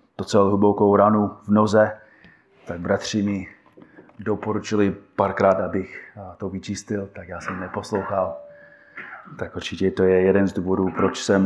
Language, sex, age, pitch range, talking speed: Czech, male, 20-39, 100-115 Hz, 135 wpm